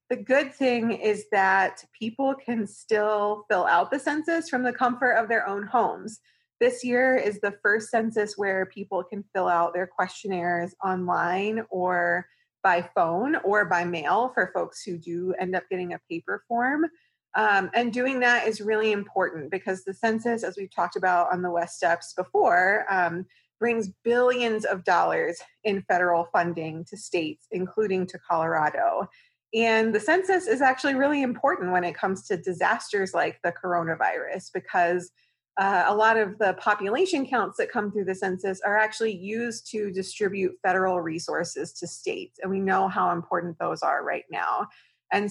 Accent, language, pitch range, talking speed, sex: American, English, 185-235 Hz, 170 wpm, female